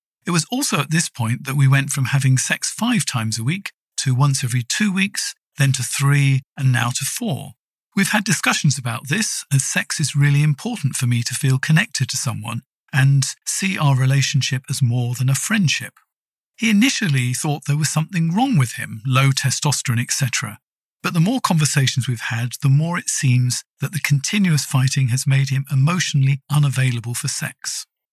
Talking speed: 185 wpm